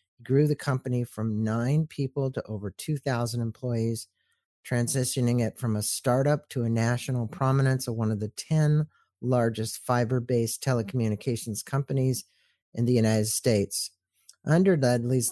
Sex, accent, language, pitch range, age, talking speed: male, American, English, 110-130 Hz, 50-69, 135 wpm